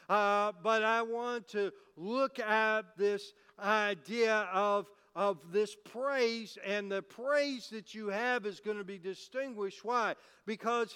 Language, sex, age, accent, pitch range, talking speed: English, male, 50-69, American, 210-250 Hz, 140 wpm